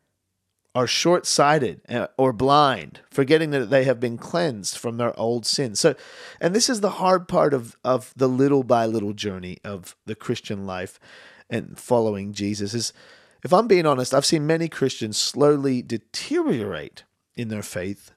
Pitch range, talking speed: 110-150 Hz, 160 wpm